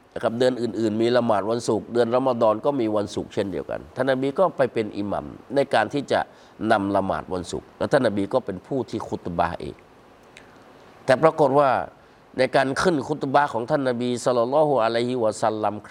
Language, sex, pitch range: Thai, male, 95-135 Hz